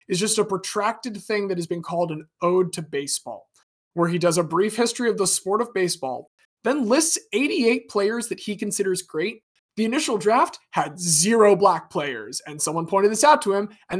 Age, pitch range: 20-39, 155-215 Hz